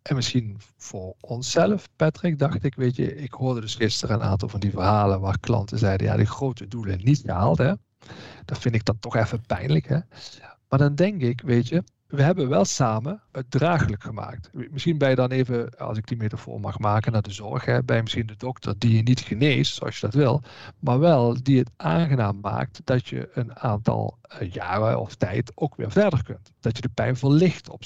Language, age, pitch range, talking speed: Dutch, 50-69, 110-140 Hz, 210 wpm